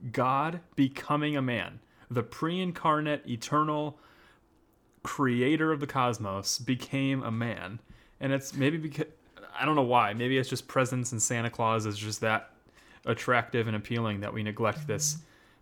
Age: 30-49